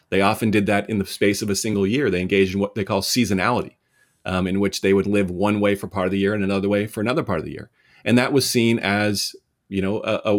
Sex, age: male, 30-49